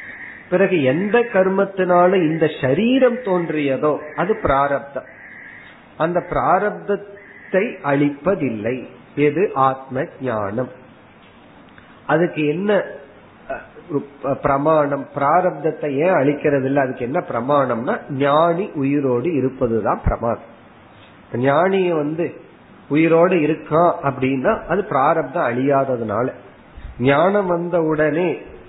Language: Tamil